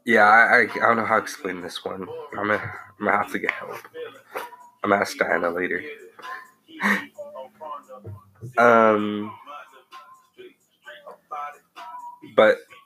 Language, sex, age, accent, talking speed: English, male, 20-39, American, 120 wpm